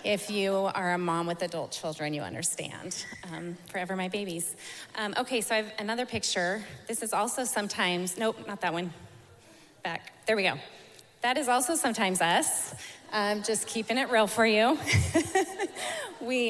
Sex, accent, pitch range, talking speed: female, American, 160-215 Hz, 170 wpm